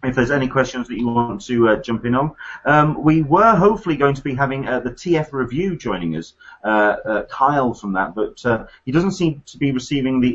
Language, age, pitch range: English, 30-49, 110-155 Hz